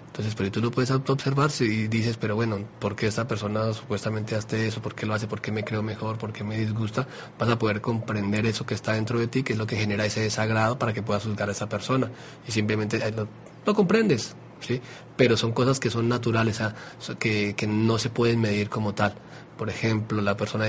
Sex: male